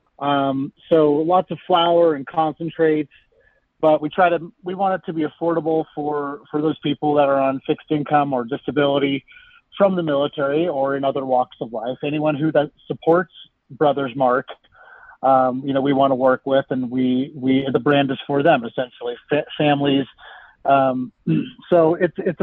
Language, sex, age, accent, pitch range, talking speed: English, male, 30-49, American, 140-165 Hz, 175 wpm